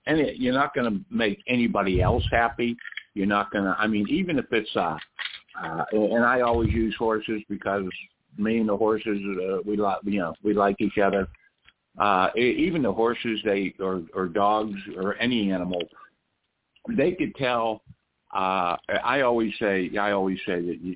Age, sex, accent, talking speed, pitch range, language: 60-79, male, American, 175 wpm, 95-120 Hz, English